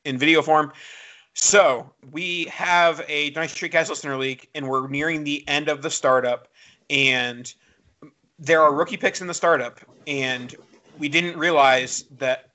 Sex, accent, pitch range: male, American, 135-160 Hz